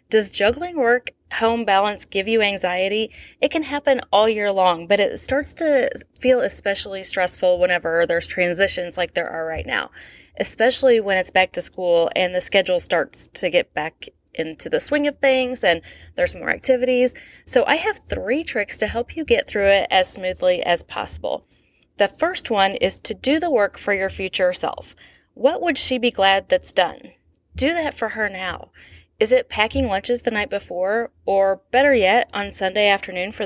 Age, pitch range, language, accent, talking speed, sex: 20-39, 185-250 Hz, English, American, 185 wpm, female